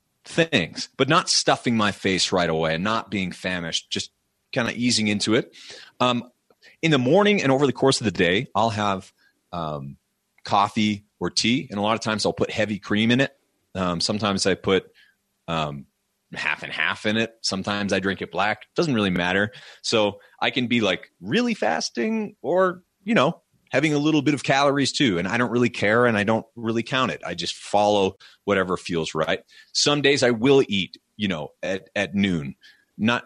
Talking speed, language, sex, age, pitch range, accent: 195 wpm, English, male, 30-49, 95-130 Hz, American